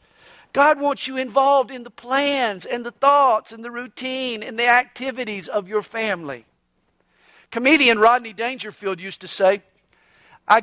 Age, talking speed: 50-69, 145 wpm